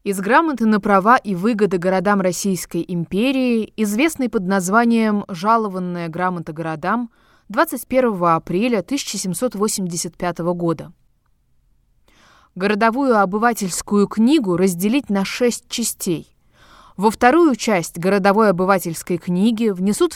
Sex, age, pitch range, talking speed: female, 20-39, 180-235 Hz, 100 wpm